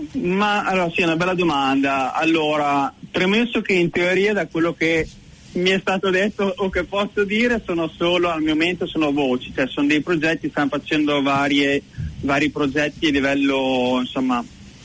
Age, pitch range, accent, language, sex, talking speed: 30-49, 135-170 Hz, native, Italian, male, 170 wpm